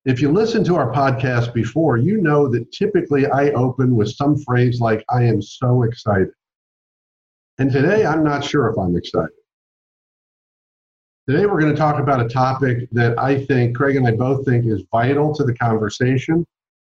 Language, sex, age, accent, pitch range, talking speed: English, male, 50-69, American, 120-150 Hz, 175 wpm